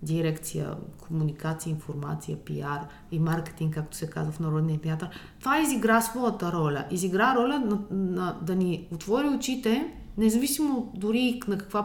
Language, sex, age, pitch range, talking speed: Bulgarian, female, 20-39, 170-220 Hz, 140 wpm